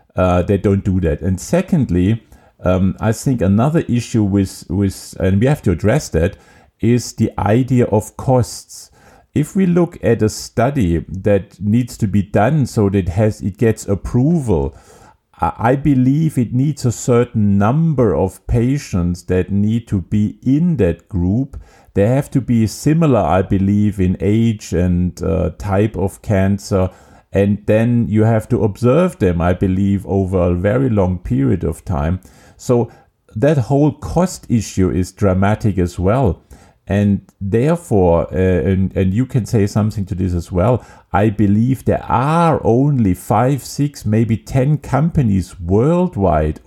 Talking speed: 155 wpm